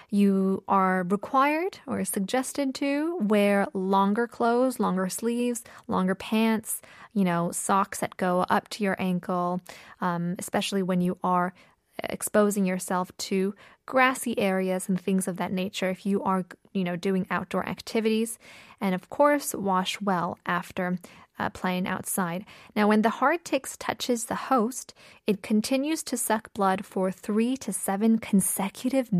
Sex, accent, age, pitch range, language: female, American, 10-29, 185-225 Hz, Korean